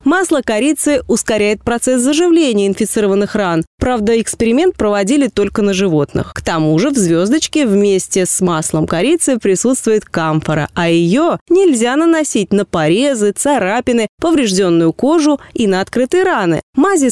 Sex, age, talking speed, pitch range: female, 20-39, 135 wpm, 185-270 Hz